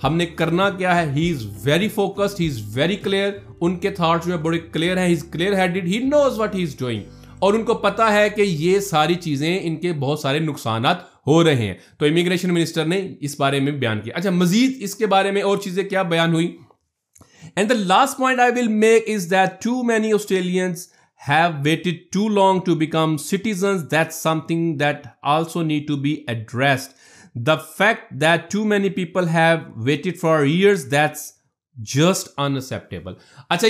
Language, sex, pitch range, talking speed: Urdu, male, 150-200 Hz, 135 wpm